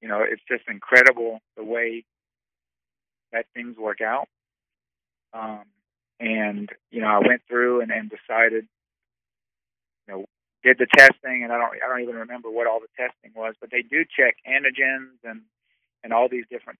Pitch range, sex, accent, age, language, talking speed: 110-120 Hz, male, American, 40-59, English, 170 wpm